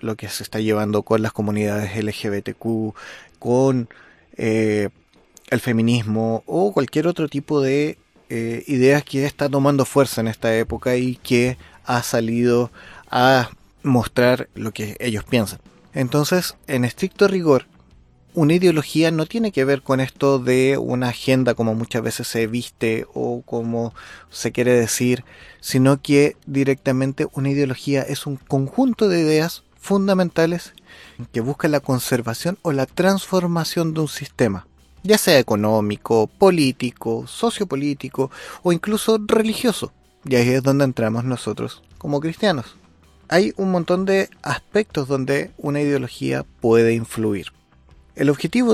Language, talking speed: Spanish, 135 wpm